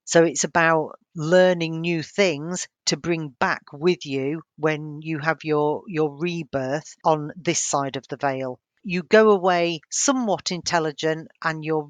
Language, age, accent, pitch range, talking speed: English, 40-59, British, 145-170 Hz, 150 wpm